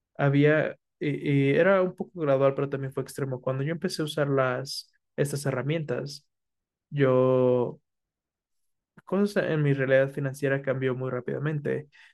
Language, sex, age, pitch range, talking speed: Spanish, male, 20-39, 130-150 Hz, 140 wpm